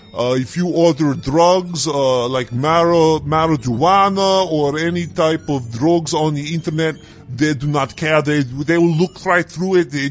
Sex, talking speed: female, 165 wpm